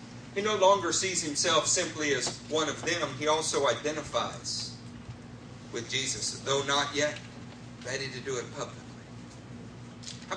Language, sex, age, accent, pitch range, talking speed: English, male, 50-69, American, 130-180 Hz, 140 wpm